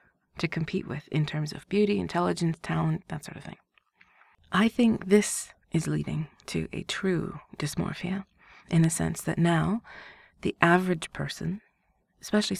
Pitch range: 150-190 Hz